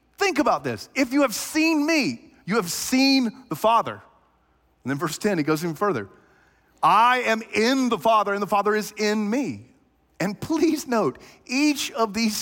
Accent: American